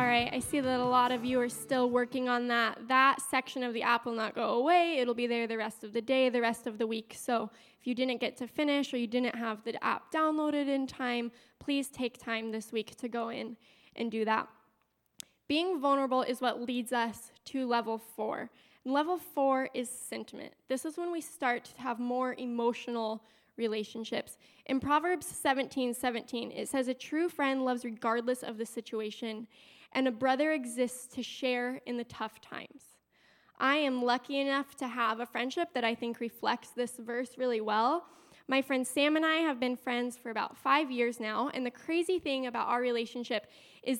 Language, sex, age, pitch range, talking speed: English, female, 10-29, 235-270 Hz, 200 wpm